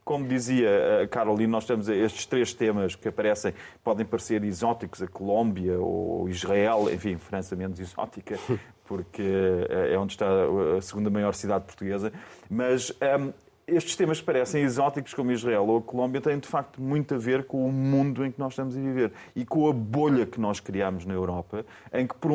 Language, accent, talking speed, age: Portuguese, Portuguese, 190 wpm, 30-49